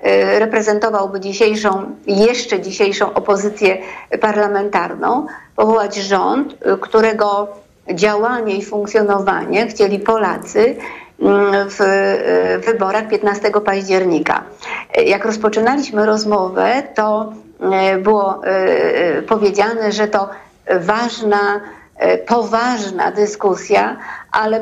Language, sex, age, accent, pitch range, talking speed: Polish, female, 50-69, native, 205-230 Hz, 75 wpm